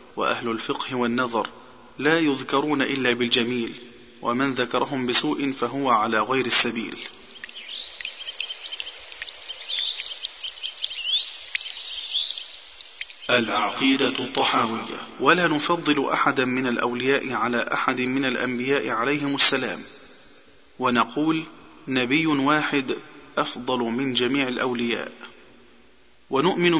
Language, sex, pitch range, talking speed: Arabic, male, 125-145 Hz, 80 wpm